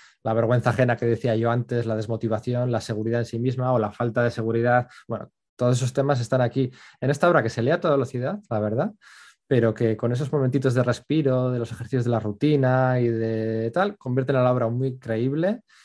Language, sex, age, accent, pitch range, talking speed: Spanish, male, 20-39, Spanish, 115-145 Hz, 220 wpm